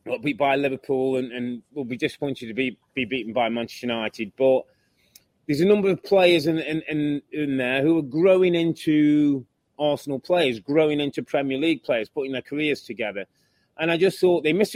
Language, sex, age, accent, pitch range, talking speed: English, male, 30-49, British, 130-170 Hz, 195 wpm